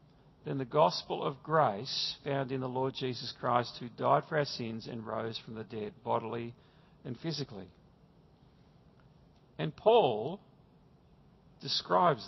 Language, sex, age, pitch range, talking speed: English, male, 50-69, 135-190 Hz, 130 wpm